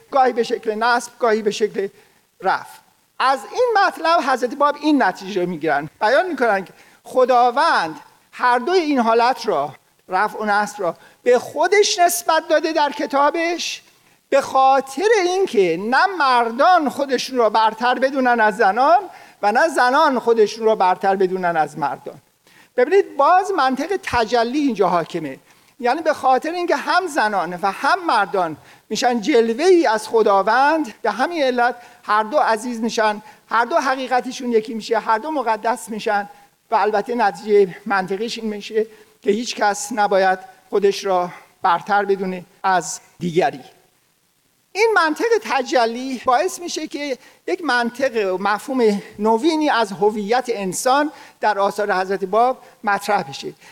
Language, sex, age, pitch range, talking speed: Persian, male, 50-69, 210-290 Hz, 140 wpm